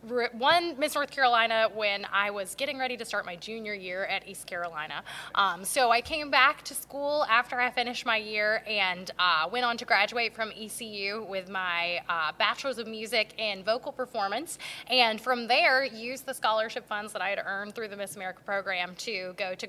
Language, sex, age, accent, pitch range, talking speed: English, female, 20-39, American, 200-260 Hz, 200 wpm